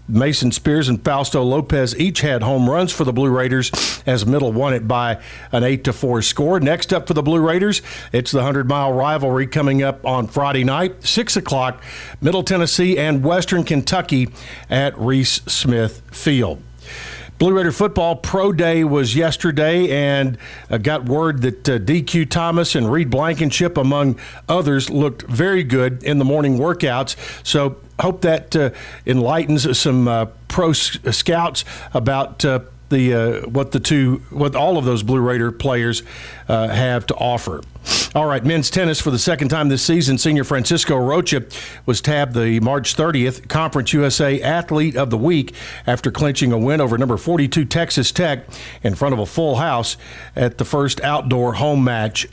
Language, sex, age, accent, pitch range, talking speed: English, male, 50-69, American, 125-160 Hz, 170 wpm